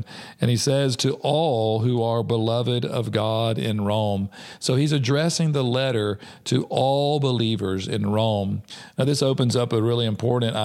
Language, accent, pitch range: English, American, 110-130 Hz